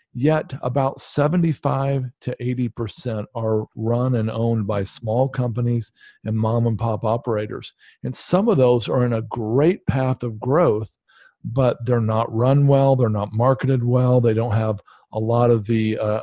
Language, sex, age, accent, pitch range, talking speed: English, male, 50-69, American, 110-135 Hz, 165 wpm